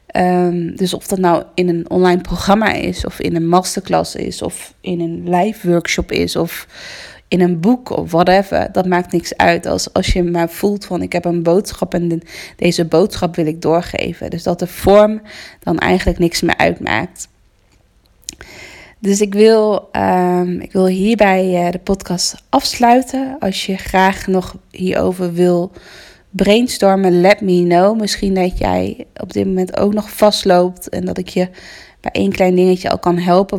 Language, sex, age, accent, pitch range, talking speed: Dutch, female, 20-39, Dutch, 175-205 Hz, 175 wpm